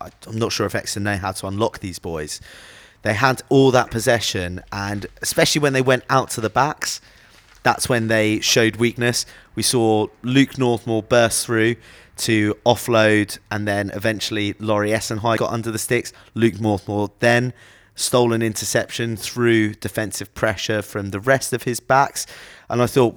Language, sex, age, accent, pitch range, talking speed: English, male, 30-49, British, 95-120 Hz, 170 wpm